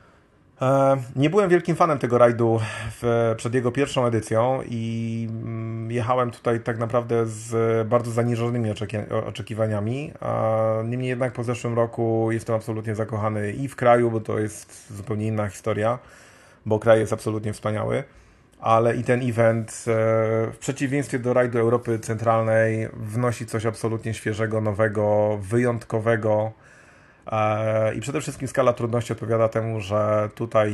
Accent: native